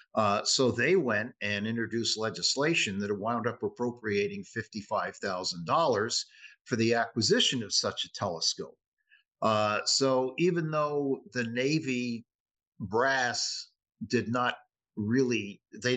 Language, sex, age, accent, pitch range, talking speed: English, male, 50-69, American, 105-130 Hz, 115 wpm